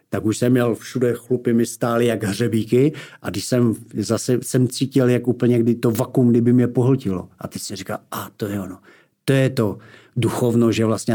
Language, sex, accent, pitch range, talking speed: Czech, male, native, 110-135 Hz, 205 wpm